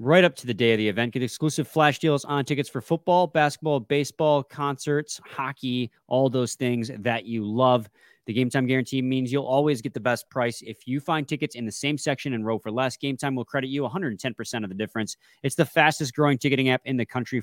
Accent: American